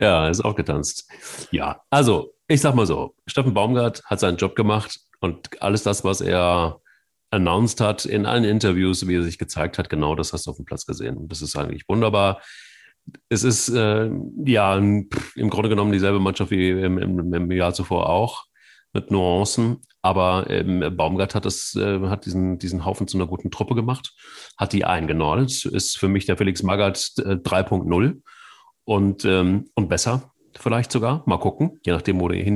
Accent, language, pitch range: German, German, 90-110 Hz